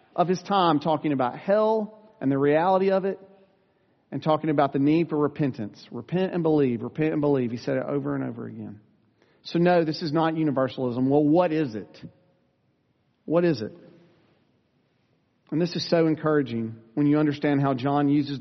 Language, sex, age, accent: English, male, 40-59, American